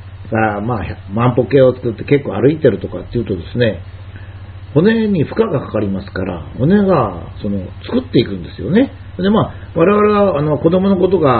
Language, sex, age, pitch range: Japanese, male, 50-69, 100-165 Hz